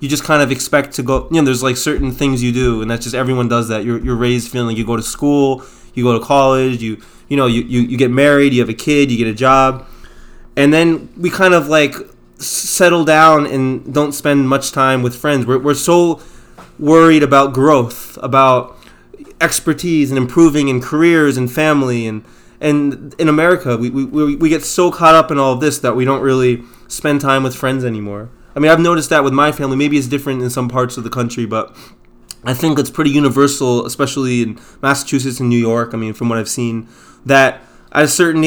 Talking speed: 220 wpm